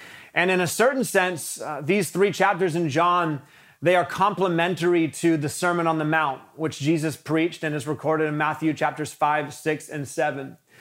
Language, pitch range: English, 155-185 Hz